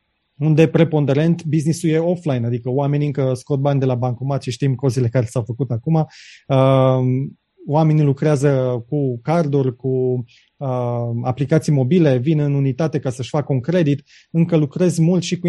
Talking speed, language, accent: 155 wpm, Romanian, native